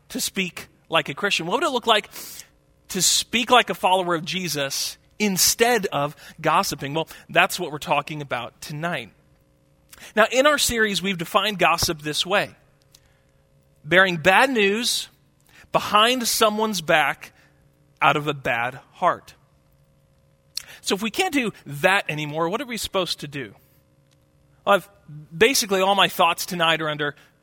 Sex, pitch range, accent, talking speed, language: male, 155-220 Hz, American, 150 wpm, English